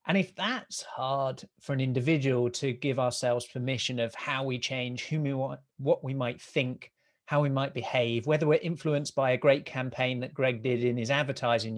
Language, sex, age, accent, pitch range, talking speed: English, male, 30-49, British, 125-180 Hz, 200 wpm